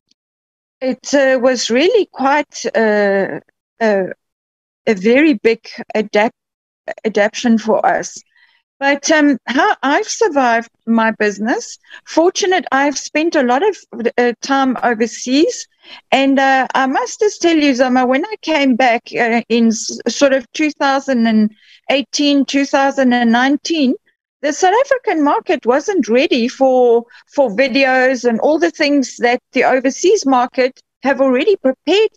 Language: English